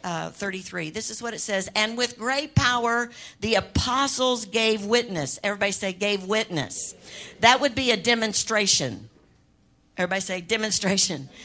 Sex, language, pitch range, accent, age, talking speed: female, English, 170-225 Hz, American, 60-79, 140 wpm